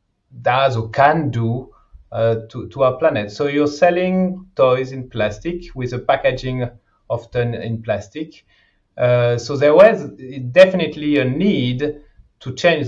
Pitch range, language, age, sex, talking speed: 120-160 Hz, English, 30-49, male, 140 wpm